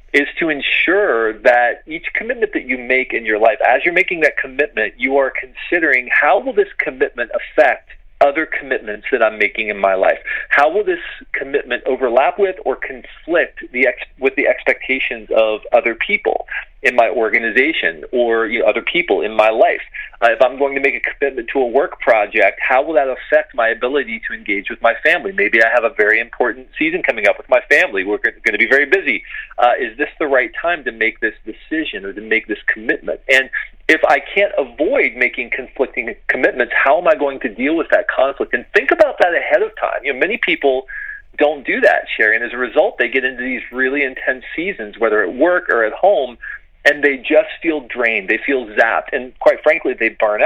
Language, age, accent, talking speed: English, 40-59, American, 215 wpm